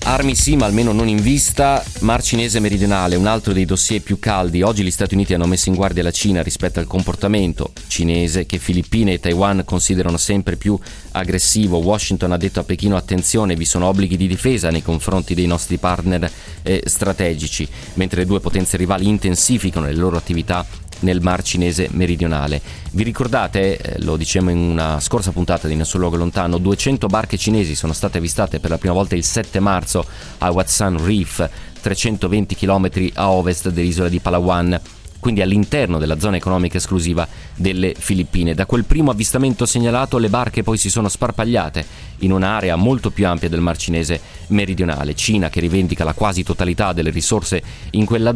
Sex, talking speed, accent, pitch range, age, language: male, 175 wpm, native, 85-105 Hz, 30-49, Italian